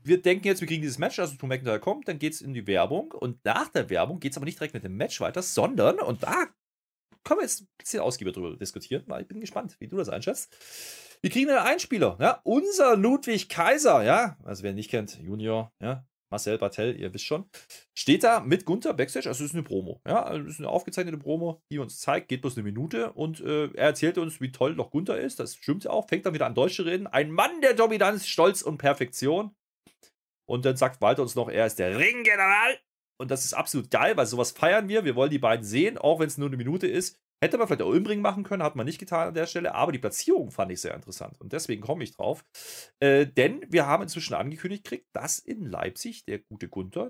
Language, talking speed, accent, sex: German, 240 wpm, German, male